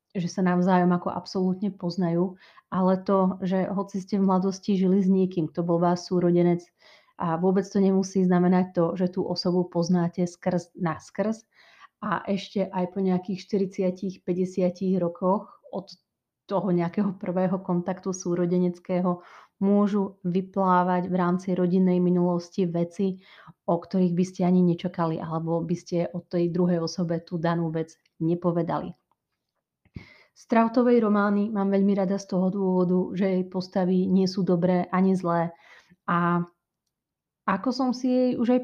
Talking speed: 145 wpm